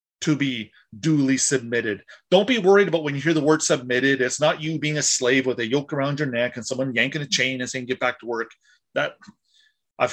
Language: English